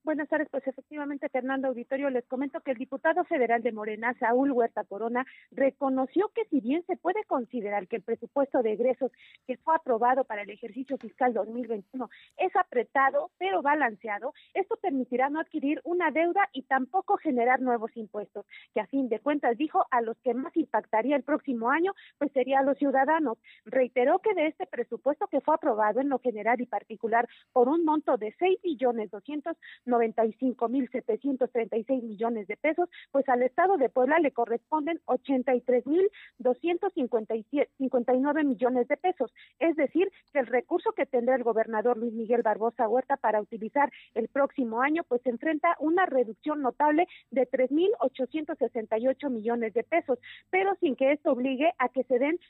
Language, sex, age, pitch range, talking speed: Spanish, female, 40-59, 240-305 Hz, 165 wpm